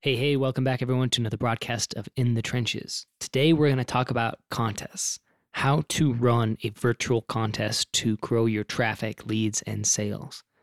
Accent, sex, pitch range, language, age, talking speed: American, male, 110-125 Hz, English, 20-39, 175 wpm